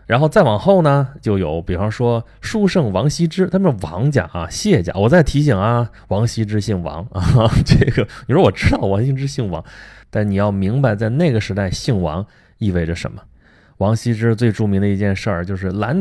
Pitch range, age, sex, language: 95-120 Hz, 20-39, male, Chinese